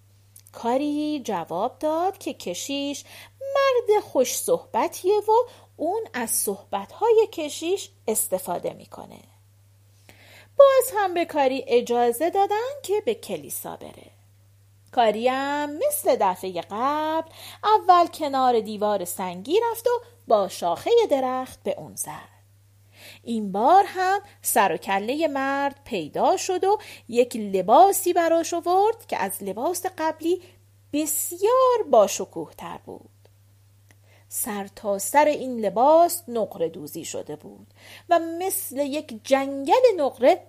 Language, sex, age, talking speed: Persian, female, 40-59, 110 wpm